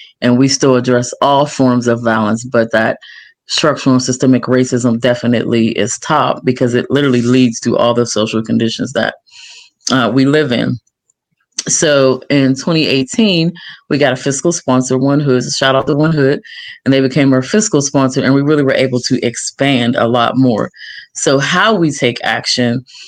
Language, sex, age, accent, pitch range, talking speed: English, female, 30-49, American, 125-145 Hz, 175 wpm